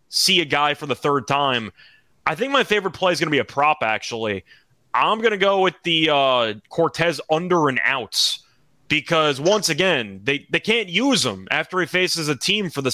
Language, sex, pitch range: English, male, 130-175 Hz